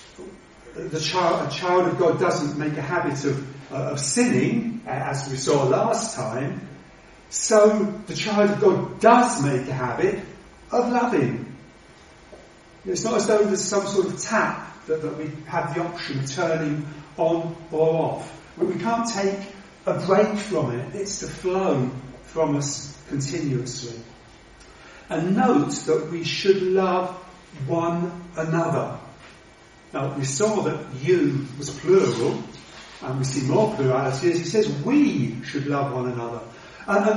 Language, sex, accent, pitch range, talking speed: English, male, British, 145-195 Hz, 145 wpm